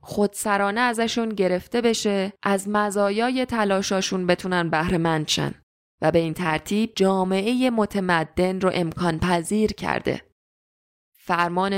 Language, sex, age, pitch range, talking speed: Persian, female, 20-39, 160-200 Hz, 110 wpm